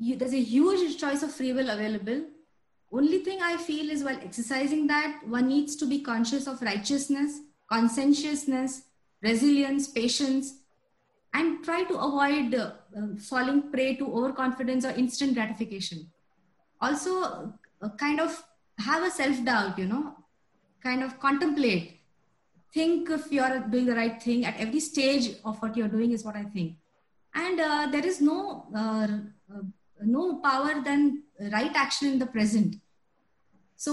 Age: 20-39